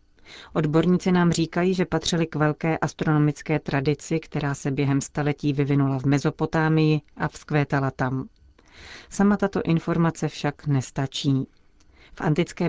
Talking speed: 125 wpm